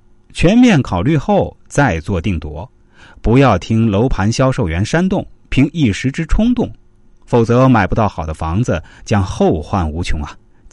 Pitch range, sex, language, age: 90-140 Hz, male, Chinese, 30-49